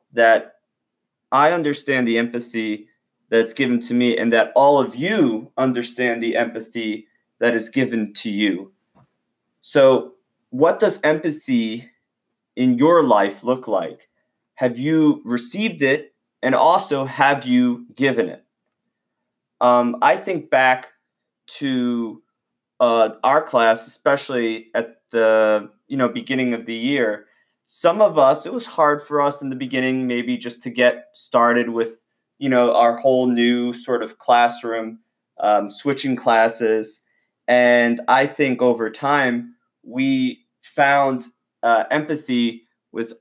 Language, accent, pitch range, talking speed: English, American, 115-135 Hz, 135 wpm